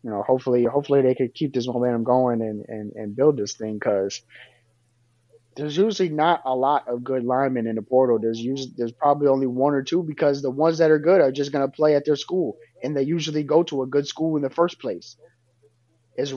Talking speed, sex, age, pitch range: 225 wpm, male, 30-49, 115-135 Hz